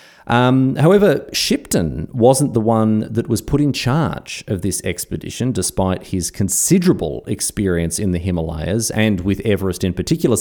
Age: 30-49